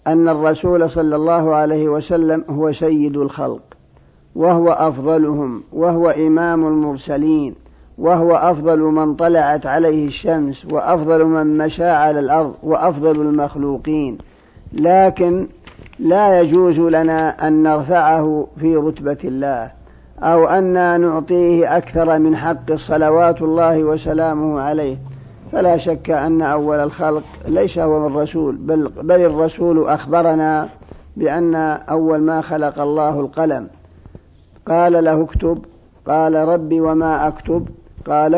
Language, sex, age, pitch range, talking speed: Arabic, male, 50-69, 150-165 Hz, 115 wpm